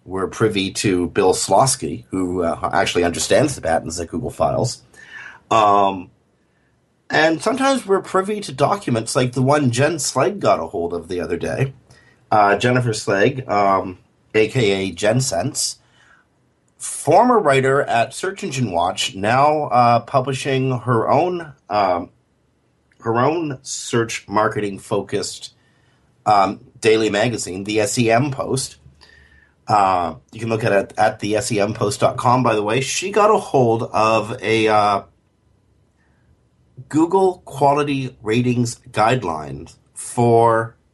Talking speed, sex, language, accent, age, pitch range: 125 wpm, male, English, American, 40-59, 110-140 Hz